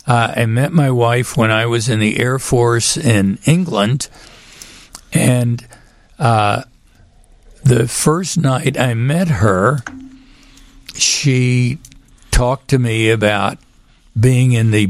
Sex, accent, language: male, American, English